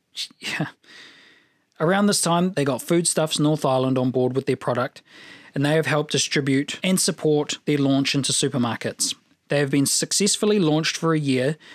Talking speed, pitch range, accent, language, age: 165 wpm, 135-165 Hz, Australian, English, 20-39